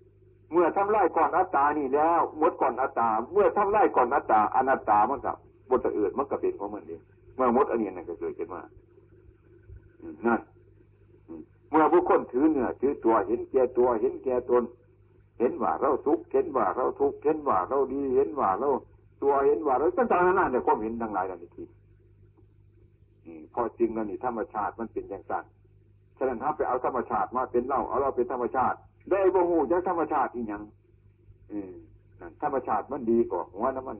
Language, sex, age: Thai, male, 60-79